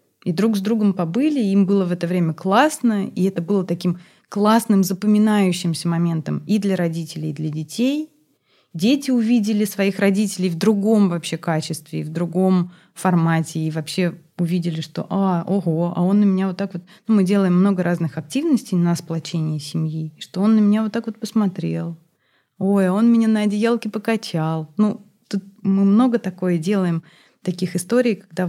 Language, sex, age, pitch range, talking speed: Russian, female, 20-39, 170-205 Hz, 170 wpm